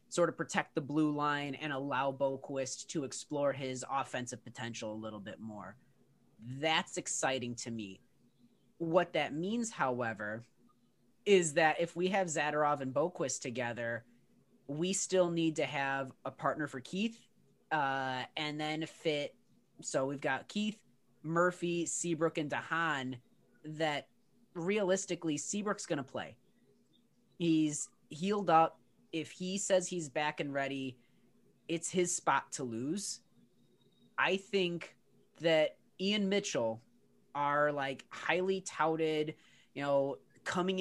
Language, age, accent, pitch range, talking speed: English, 30-49, American, 135-180 Hz, 130 wpm